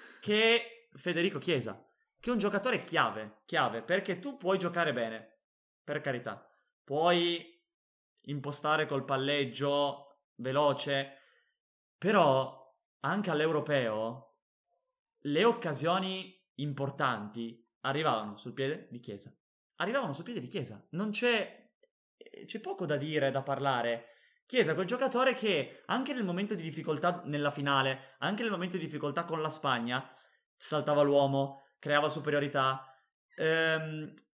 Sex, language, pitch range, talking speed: male, Italian, 140-185 Hz, 120 wpm